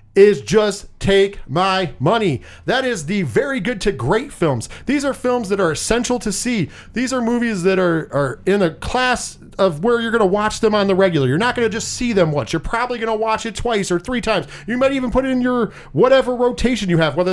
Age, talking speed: 40-59, 240 wpm